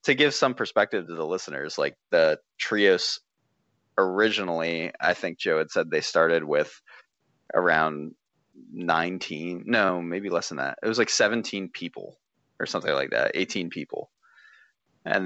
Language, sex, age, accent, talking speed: English, male, 30-49, American, 150 wpm